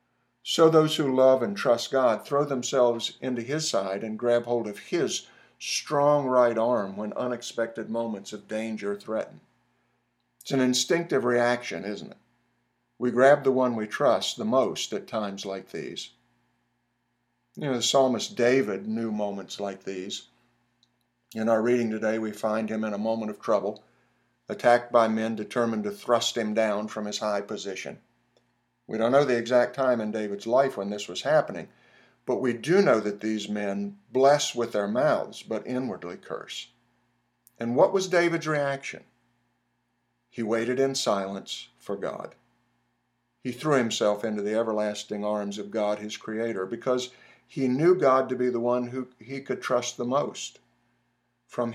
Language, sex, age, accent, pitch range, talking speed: English, male, 50-69, American, 105-125 Hz, 165 wpm